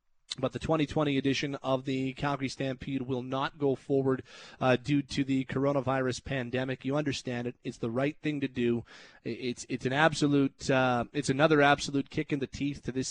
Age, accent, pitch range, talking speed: 30-49, American, 135-175 Hz, 190 wpm